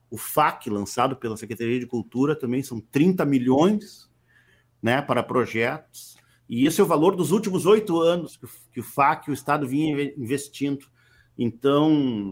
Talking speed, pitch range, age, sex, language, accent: 150 wpm, 130-195 Hz, 50-69, male, Portuguese, Brazilian